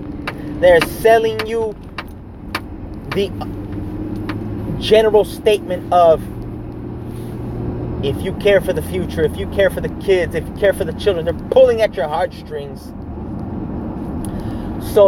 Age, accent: 30-49, American